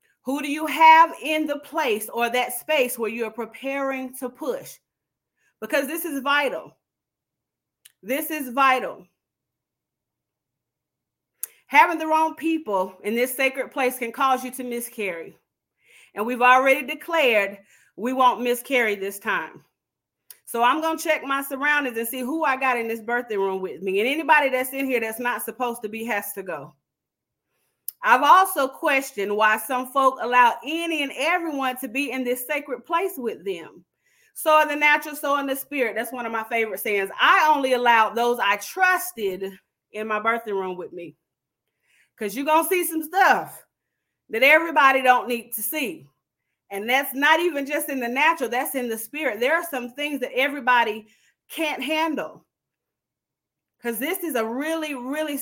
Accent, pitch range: American, 235-300 Hz